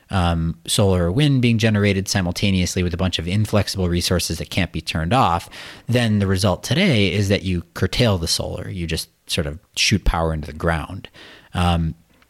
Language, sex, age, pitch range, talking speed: English, male, 40-59, 80-105 Hz, 185 wpm